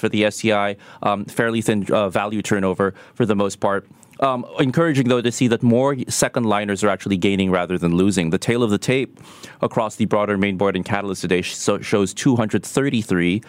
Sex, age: male, 30-49